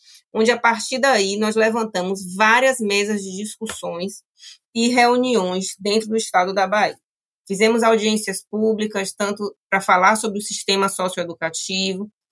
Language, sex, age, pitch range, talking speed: Portuguese, female, 20-39, 190-225 Hz, 130 wpm